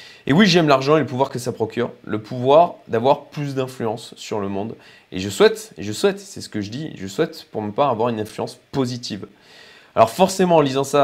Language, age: French, 20-39